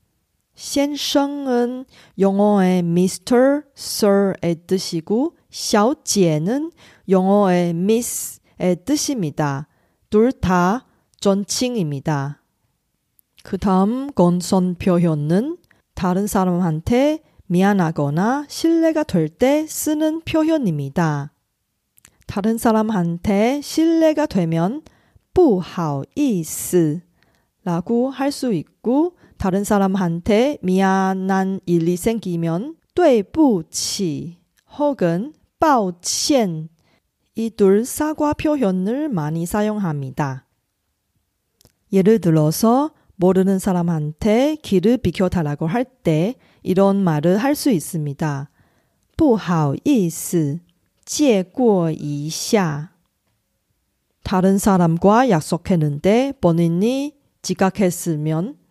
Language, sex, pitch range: Korean, female, 170-245 Hz